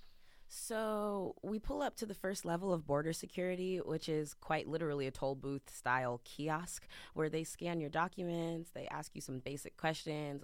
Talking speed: 180 wpm